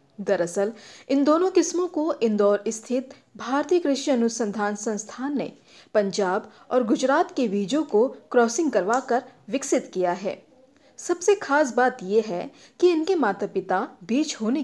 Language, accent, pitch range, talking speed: English, Indian, 205-275 Hz, 135 wpm